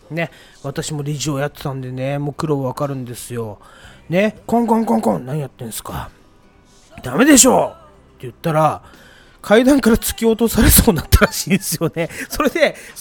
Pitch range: 135-210 Hz